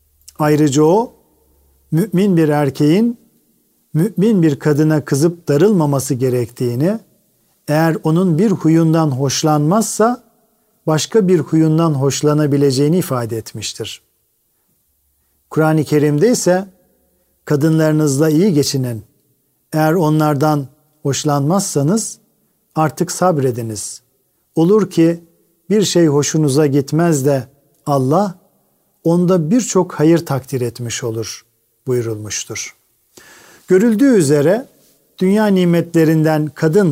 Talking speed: 85 wpm